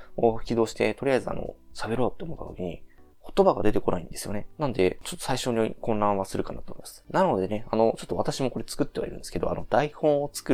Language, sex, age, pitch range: Japanese, male, 20-39, 95-145 Hz